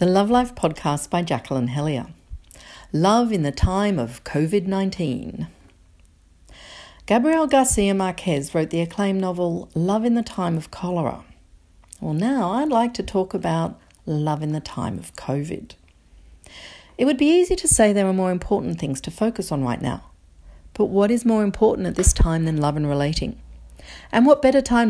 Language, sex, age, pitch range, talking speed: English, female, 50-69, 140-210 Hz, 170 wpm